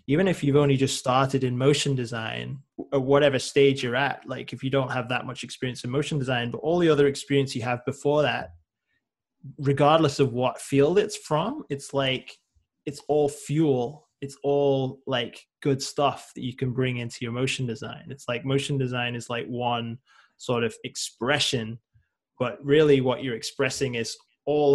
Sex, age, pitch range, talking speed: male, 20-39, 125-140 Hz, 180 wpm